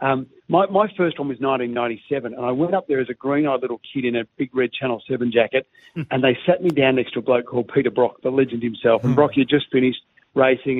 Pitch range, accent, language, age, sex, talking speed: 120-135 Hz, Australian, English, 50-69, male, 250 wpm